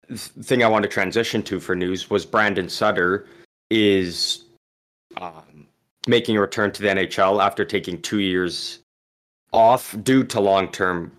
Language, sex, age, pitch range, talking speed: English, male, 20-39, 90-105 Hz, 145 wpm